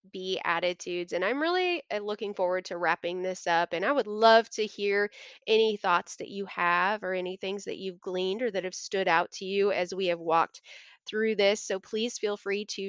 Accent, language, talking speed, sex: American, English, 215 wpm, female